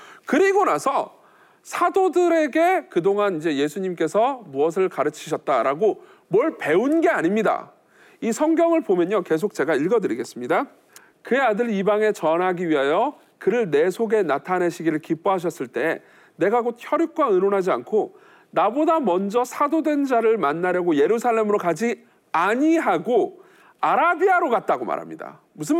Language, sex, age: Korean, male, 40-59